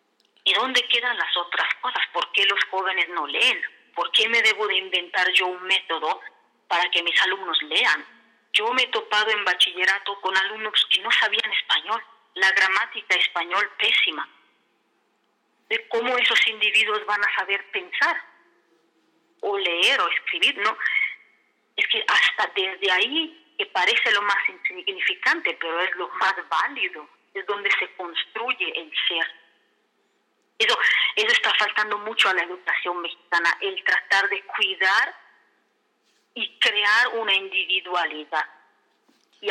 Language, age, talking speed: Spanish, 30-49, 145 wpm